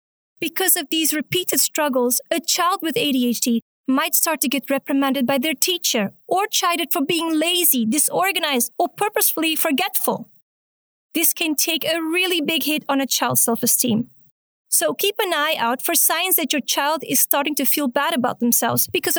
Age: 30-49